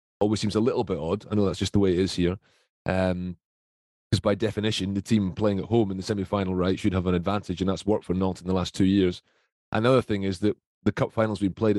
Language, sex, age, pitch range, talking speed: English, male, 30-49, 95-115 Hz, 260 wpm